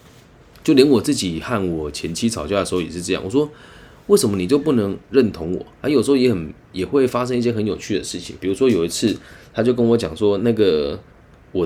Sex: male